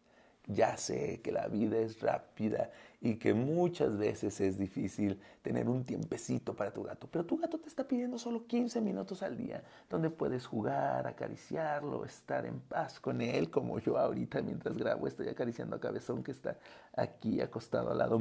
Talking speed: 180 wpm